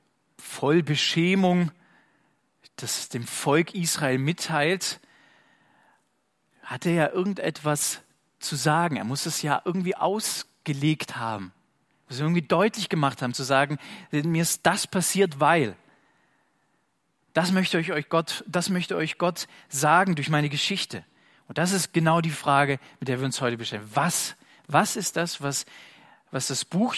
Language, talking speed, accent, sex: German, 145 wpm, German, male